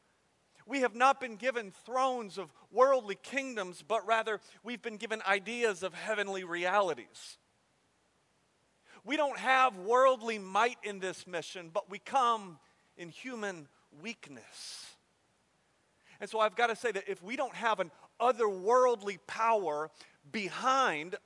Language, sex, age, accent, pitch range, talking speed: English, male, 40-59, American, 170-225 Hz, 135 wpm